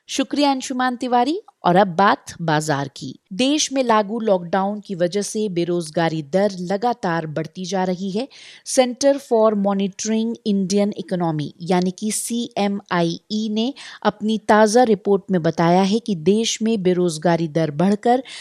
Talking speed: 140 wpm